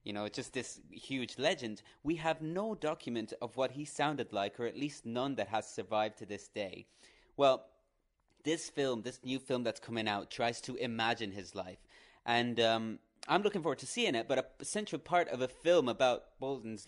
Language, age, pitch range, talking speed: English, 30-49, 115-140 Hz, 200 wpm